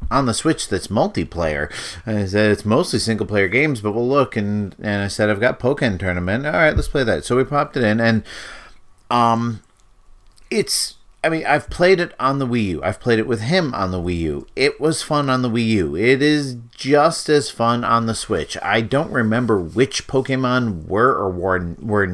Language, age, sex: English, 30-49, male